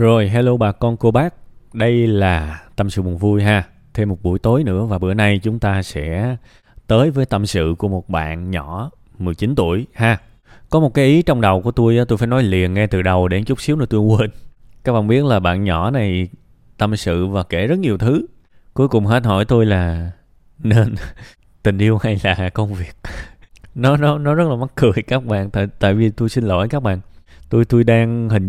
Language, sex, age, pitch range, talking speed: Vietnamese, male, 20-39, 95-125 Hz, 220 wpm